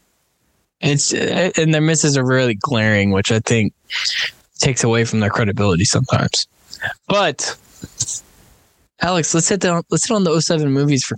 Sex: male